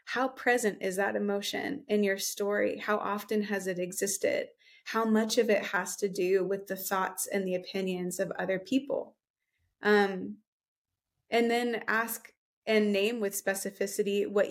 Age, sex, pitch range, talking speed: 20-39, female, 190-215 Hz, 155 wpm